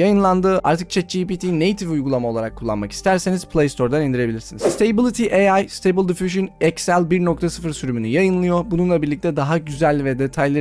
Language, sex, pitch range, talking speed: Turkish, male, 140-185 Hz, 135 wpm